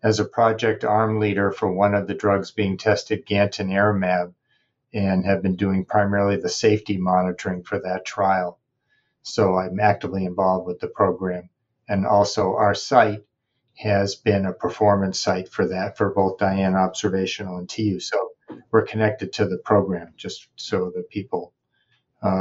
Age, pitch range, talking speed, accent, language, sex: 50-69, 100-110 Hz, 160 wpm, American, English, male